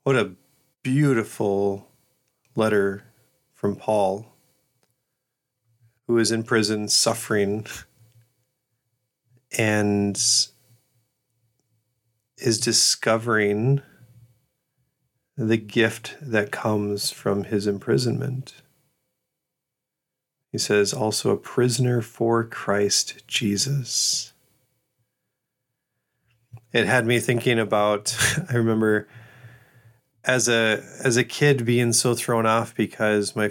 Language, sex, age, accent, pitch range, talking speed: English, male, 40-59, American, 105-125 Hz, 85 wpm